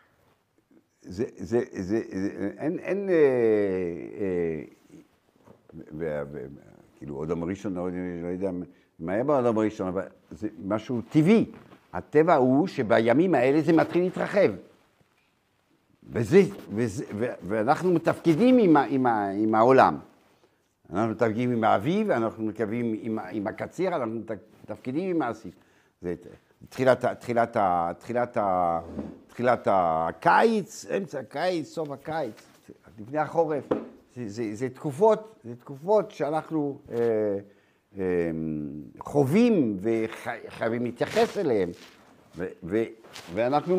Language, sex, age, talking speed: Hebrew, male, 60-79, 115 wpm